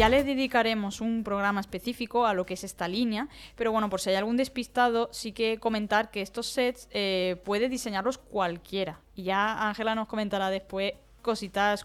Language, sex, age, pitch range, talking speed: Spanish, female, 20-39, 190-235 Hz, 175 wpm